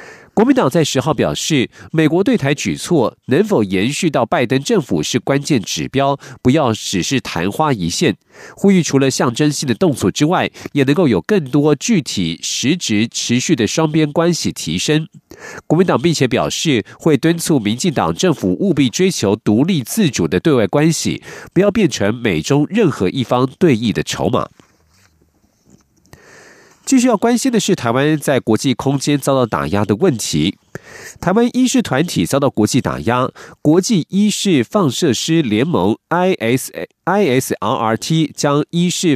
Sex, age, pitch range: male, 50-69, 125-170 Hz